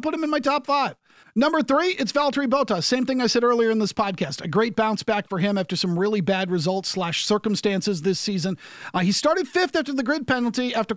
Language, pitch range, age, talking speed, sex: English, 195-255 Hz, 40-59, 235 wpm, male